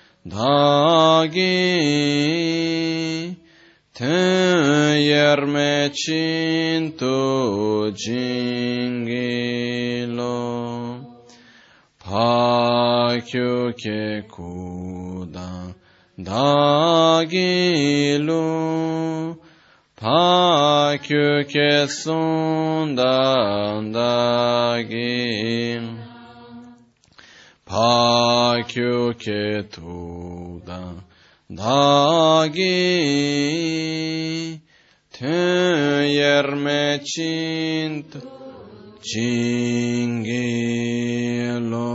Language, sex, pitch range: Italian, male, 120-155 Hz